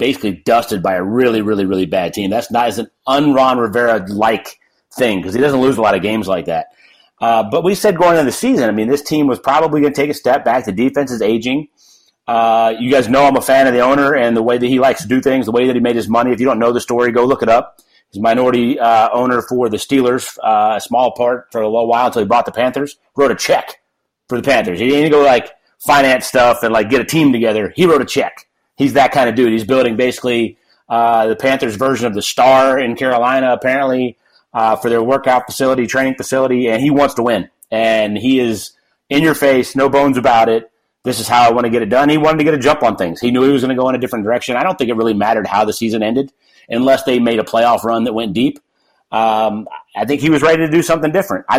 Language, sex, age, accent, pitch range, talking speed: English, male, 30-49, American, 115-135 Hz, 265 wpm